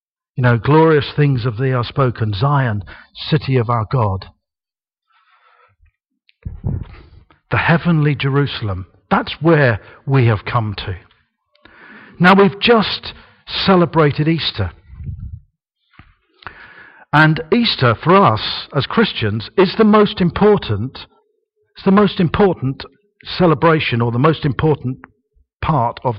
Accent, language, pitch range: British, English, 130-210 Hz